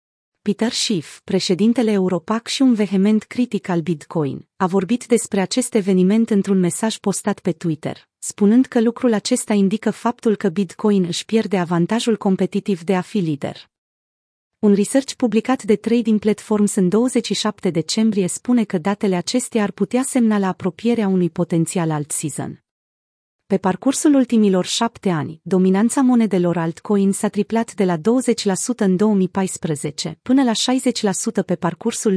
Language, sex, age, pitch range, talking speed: Romanian, female, 30-49, 180-230 Hz, 145 wpm